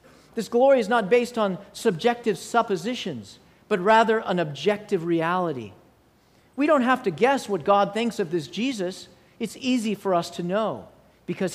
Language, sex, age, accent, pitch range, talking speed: English, male, 50-69, American, 180-230 Hz, 160 wpm